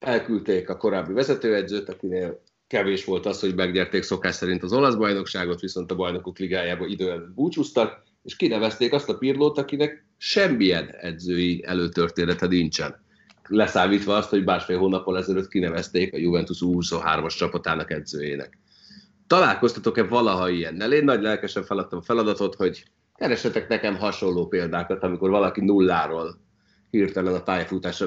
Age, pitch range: 30-49, 90-105 Hz